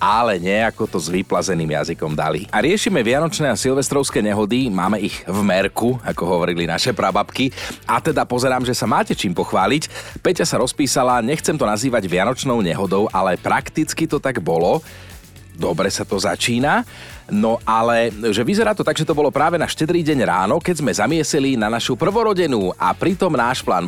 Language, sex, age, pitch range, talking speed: Slovak, male, 40-59, 105-150 Hz, 175 wpm